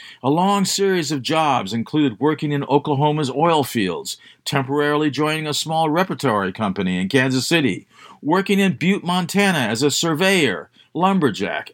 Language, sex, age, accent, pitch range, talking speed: English, male, 50-69, American, 135-165 Hz, 145 wpm